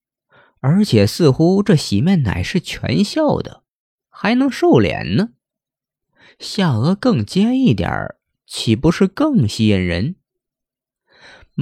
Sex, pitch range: male, 115-185 Hz